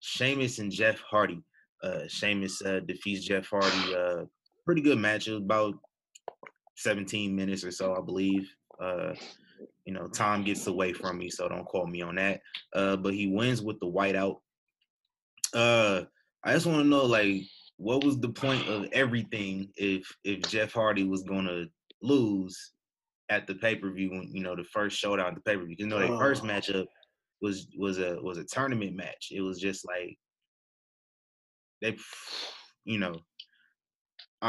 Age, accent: 20-39, American